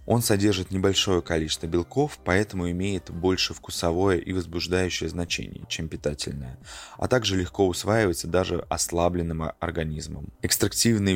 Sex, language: male, Russian